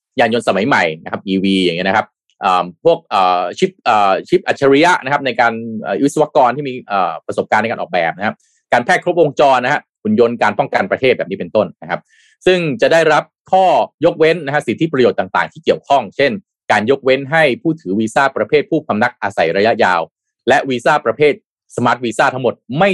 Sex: male